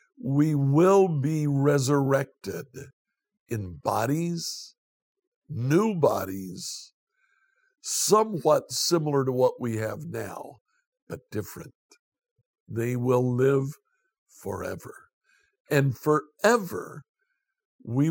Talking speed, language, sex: 80 wpm, English, male